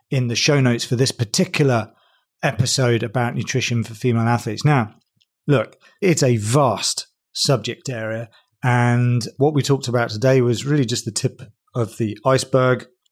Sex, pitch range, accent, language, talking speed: male, 115-140 Hz, British, English, 155 wpm